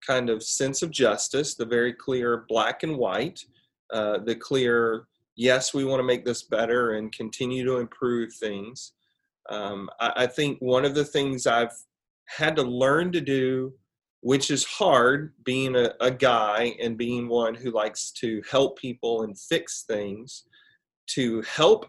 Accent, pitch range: American, 115-145 Hz